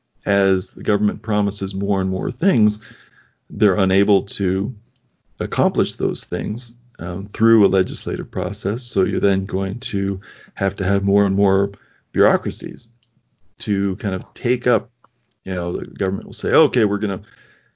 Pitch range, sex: 100-120 Hz, male